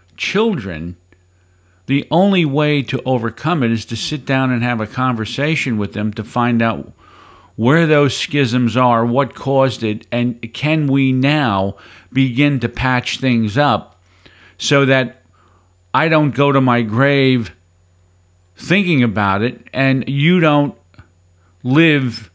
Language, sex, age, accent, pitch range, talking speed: English, male, 50-69, American, 90-130 Hz, 135 wpm